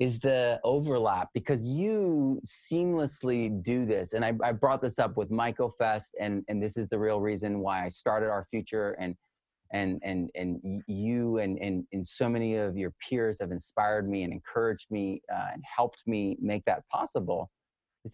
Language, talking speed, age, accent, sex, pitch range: English, 185 wpm, 30-49, American, male, 100-135 Hz